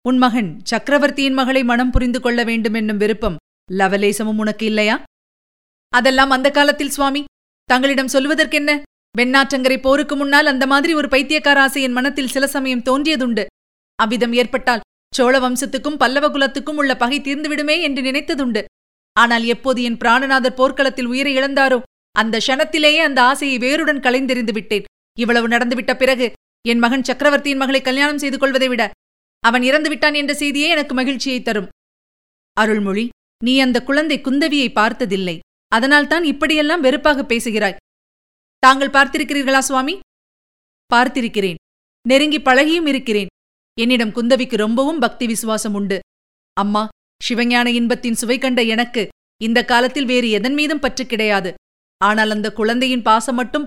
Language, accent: Tamil, native